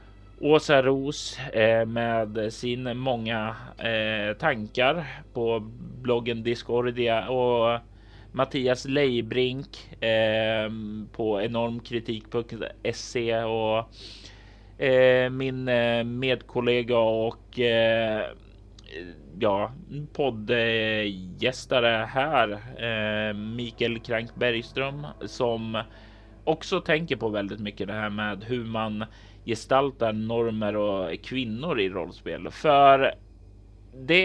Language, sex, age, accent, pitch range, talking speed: Swedish, male, 30-49, native, 105-125 Hz, 70 wpm